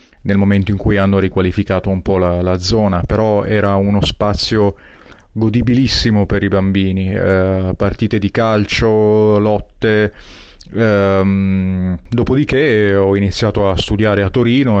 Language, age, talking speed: Italian, 30-49, 130 wpm